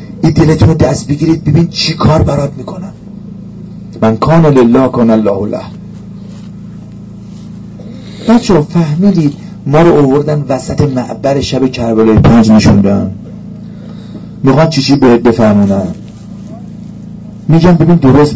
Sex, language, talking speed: male, Persian, 100 wpm